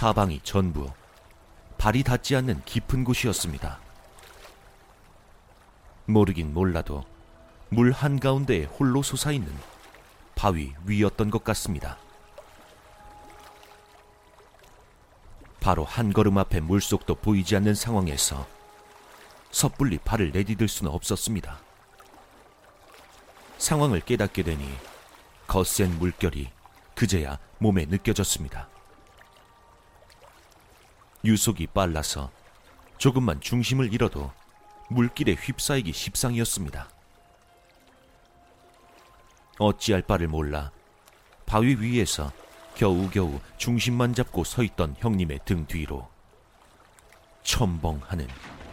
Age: 40-59